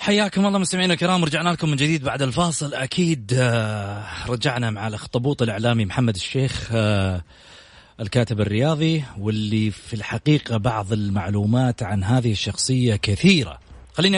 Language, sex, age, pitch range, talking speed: English, male, 30-49, 125-160 Hz, 125 wpm